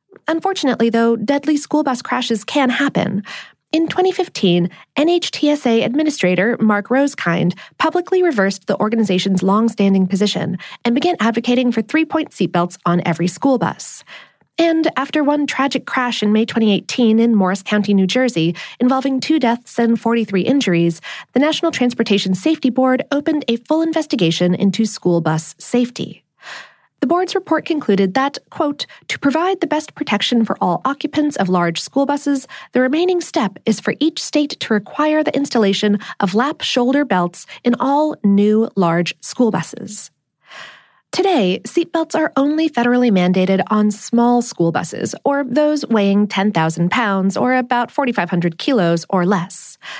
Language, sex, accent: English, female, American